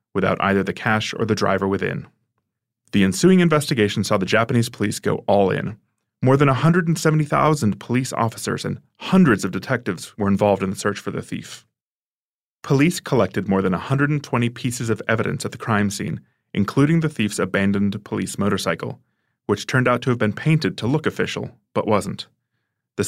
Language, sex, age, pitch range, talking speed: English, male, 30-49, 105-130 Hz, 170 wpm